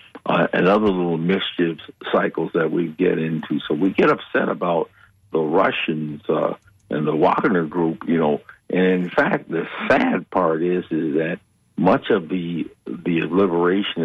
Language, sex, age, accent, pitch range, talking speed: English, male, 60-79, American, 85-105 Hz, 160 wpm